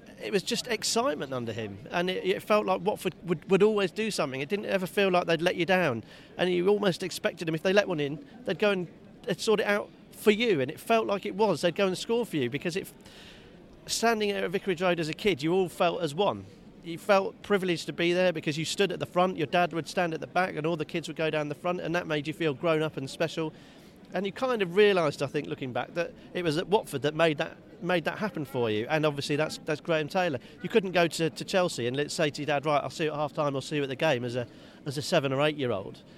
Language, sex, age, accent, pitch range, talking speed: English, male, 40-59, British, 155-195 Hz, 280 wpm